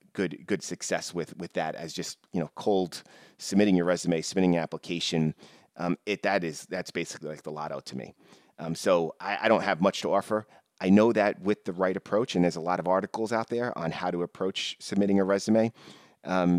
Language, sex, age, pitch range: English, male, 30-49, 85-105 Hz